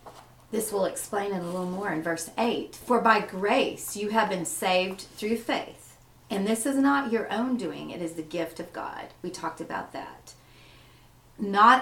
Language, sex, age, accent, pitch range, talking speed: English, female, 40-59, American, 175-225 Hz, 190 wpm